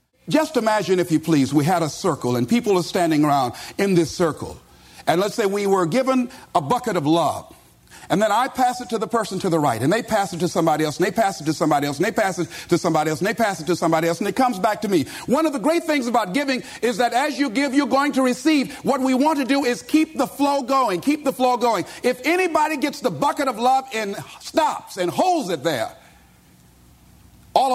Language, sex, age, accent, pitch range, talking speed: English, male, 50-69, American, 190-280 Hz, 255 wpm